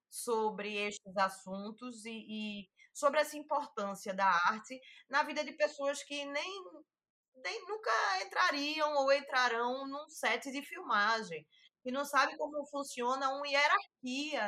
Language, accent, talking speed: Portuguese, Brazilian, 135 wpm